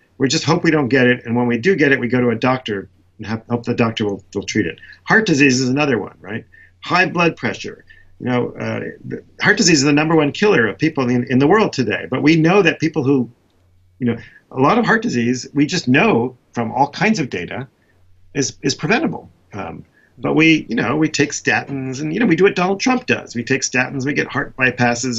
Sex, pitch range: male, 105-150 Hz